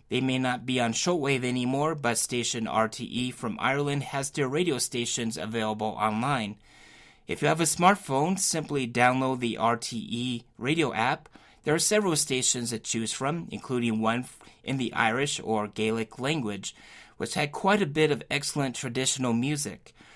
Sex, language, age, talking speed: male, English, 30-49, 160 wpm